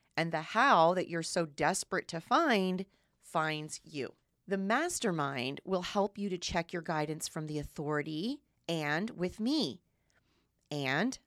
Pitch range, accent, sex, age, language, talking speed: 160-205 Hz, American, female, 30-49, English, 145 wpm